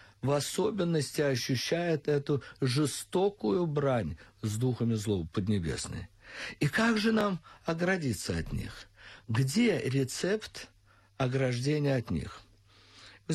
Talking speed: 105 wpm